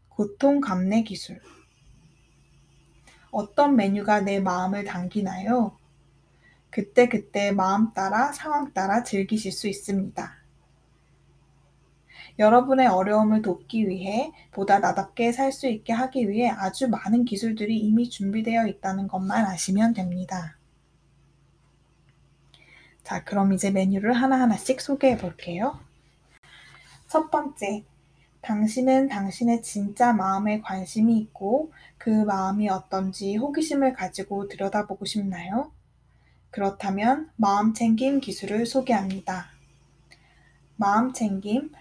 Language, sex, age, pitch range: Korean, female, 20-39, 195-240 Hz